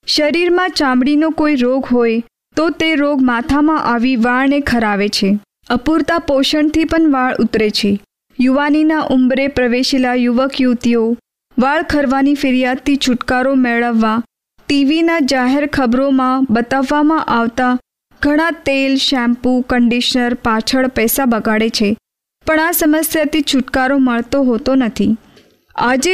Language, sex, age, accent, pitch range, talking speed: Hindi, female, 20-39, native, 240-290 Hz, 85 wpm